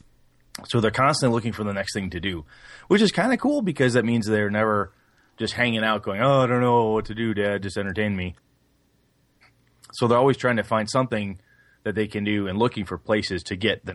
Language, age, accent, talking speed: English, 30-49, American, 230 wpm